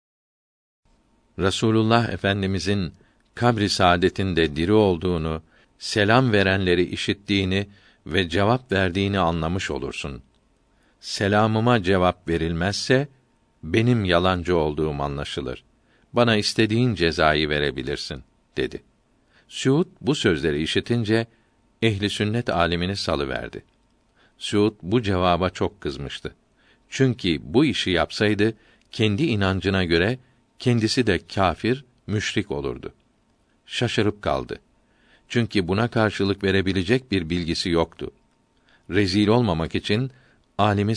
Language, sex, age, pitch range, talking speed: Turkish, male, 50-69, 90-115 Hz, 95 wpm